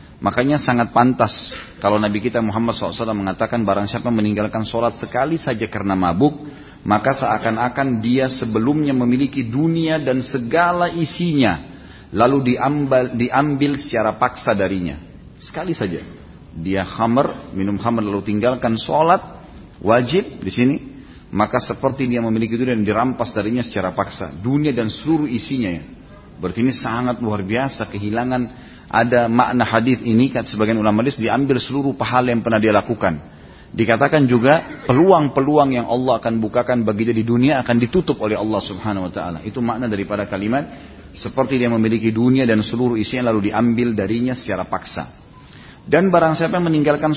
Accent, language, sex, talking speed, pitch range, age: native, Indonesian, male, 145 wpm, 110-135 Hz, 40-59